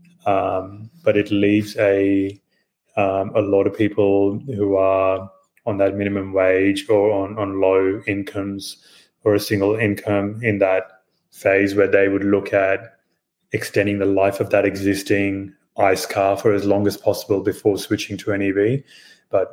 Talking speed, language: 160 wpm, English